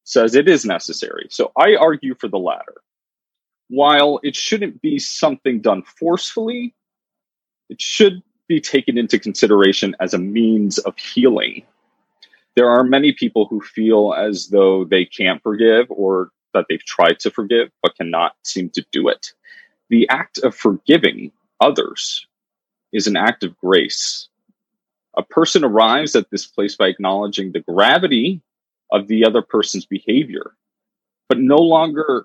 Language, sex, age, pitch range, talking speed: English, male, 30-49, 105-160 Hz, 145 wpm